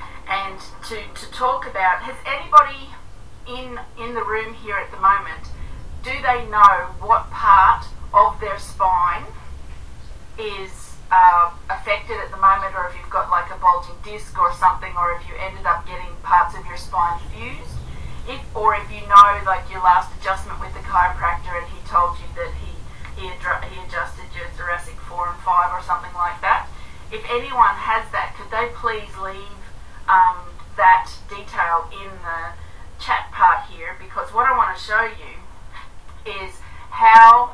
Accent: Australian